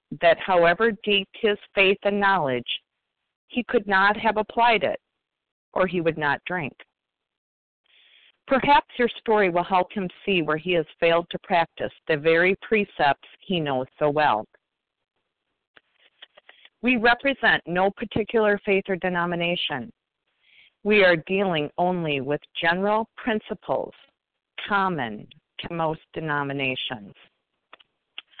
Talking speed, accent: 120 wpm, American